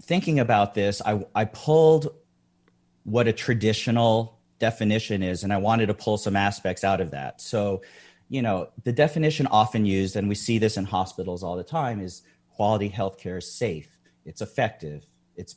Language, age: English, 30-49